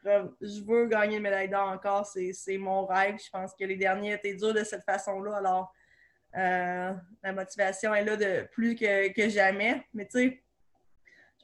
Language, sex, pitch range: French, female, 190-215 Hz